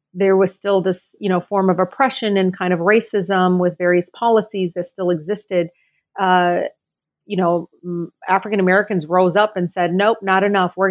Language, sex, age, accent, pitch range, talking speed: English, female, 40-59, American, 180-205 Hz, 180 wpm